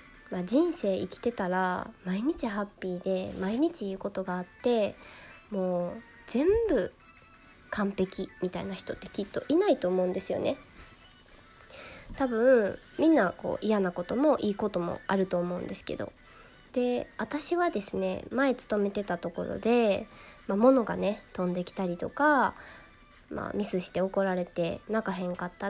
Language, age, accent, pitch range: Japanese, 20-39, native, 185-250 Hz